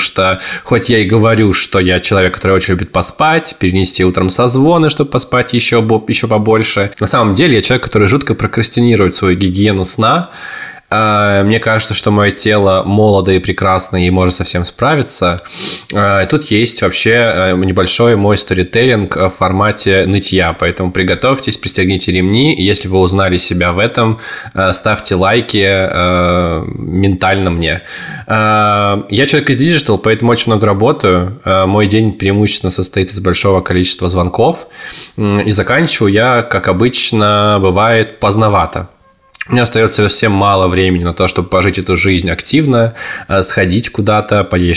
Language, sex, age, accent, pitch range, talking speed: Russian, male, 20-39, native, 95-115 Hz, 140 wpm